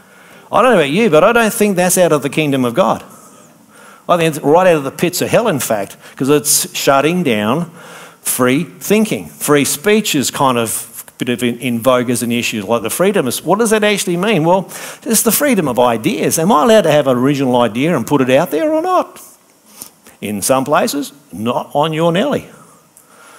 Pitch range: 130-200 Hz